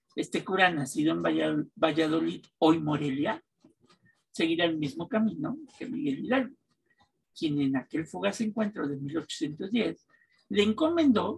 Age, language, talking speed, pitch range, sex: 50-69, Spanish, 120 wpm, 155-255 Hz, male